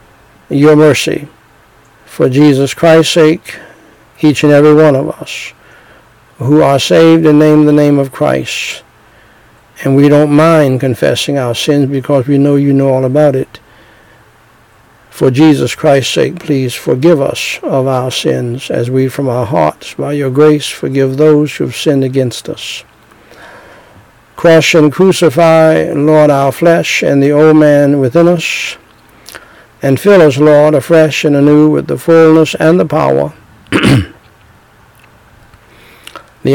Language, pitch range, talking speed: English, 130-160 Hz, 145 wpm